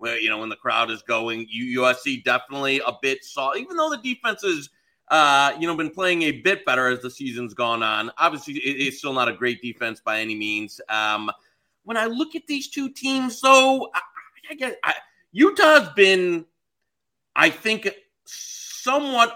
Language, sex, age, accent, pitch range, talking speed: English, male, 30-49, American, 130-205 Hz, 185 wpm